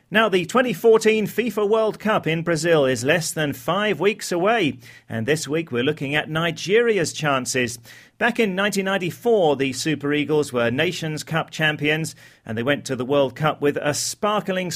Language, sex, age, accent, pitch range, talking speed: English, male, 40-59, British, 135-180 Hz, 170 wpm